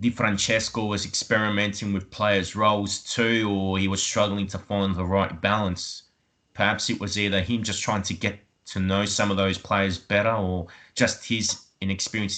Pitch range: 95-115 Hz